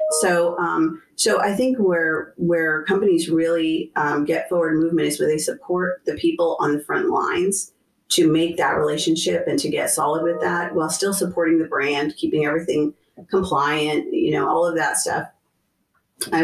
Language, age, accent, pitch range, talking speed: English, 40-59, American, 160-215 Hz, 175 wpm